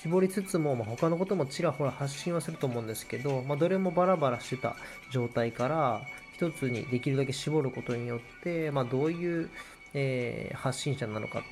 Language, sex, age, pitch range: Japanese, male, 20-39, 120-145 Hz